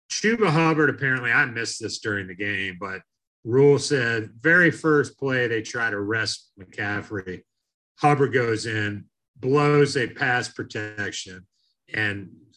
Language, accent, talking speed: English, American, 135 wpm